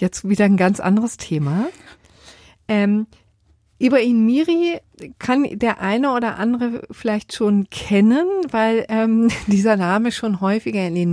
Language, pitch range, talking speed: German, 170-210 Hz, 135 wpm